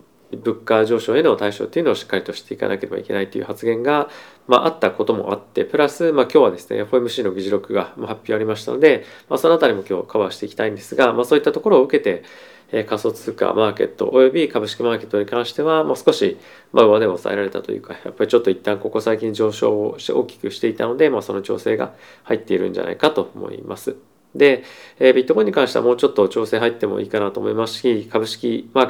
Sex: male